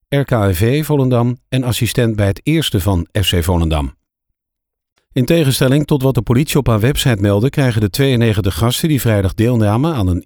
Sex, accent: male, Dutch